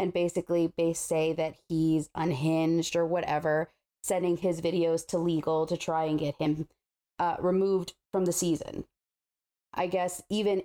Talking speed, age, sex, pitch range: 150 wpm, 30-49, female, 165-190 Hz